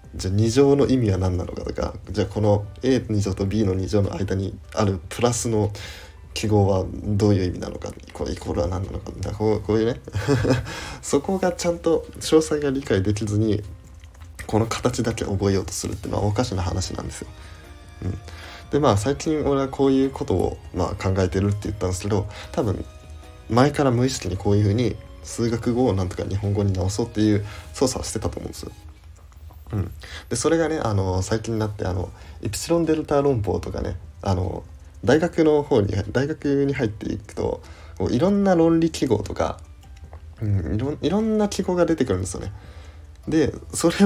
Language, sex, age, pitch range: Japanese, male, 20-39, 90-120 Hz